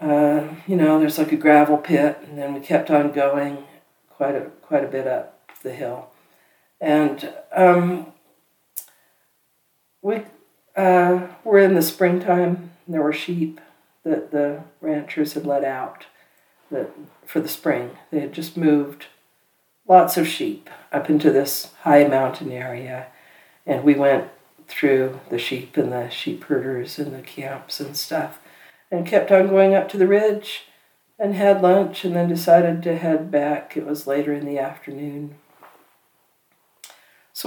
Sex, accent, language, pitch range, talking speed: female, American, English, 145-180 Hz, 155 wpm